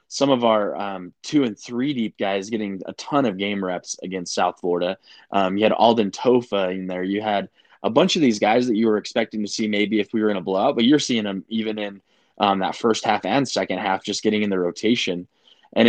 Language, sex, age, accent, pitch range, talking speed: English, male, 20-39, American, 100-115 Hz, 240 wpm